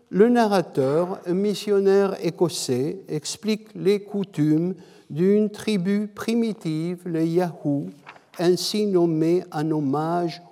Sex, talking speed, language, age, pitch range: male, 95 wpm, French, 60-79, 160-205 Hz